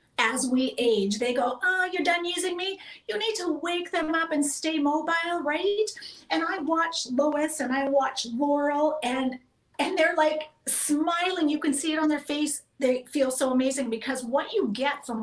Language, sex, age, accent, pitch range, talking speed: English, female, 40-59, American, 245-320 Hz, 195 wpm